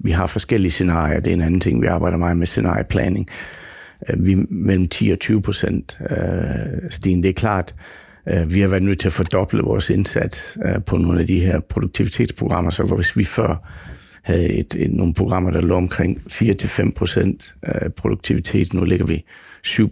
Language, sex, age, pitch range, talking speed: Danish, male, 60-79, 90-110 Hz, 190 wpm